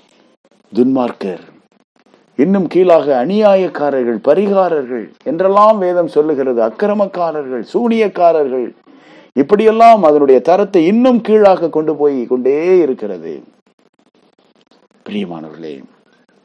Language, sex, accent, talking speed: Tamil, male, native, 75 wpm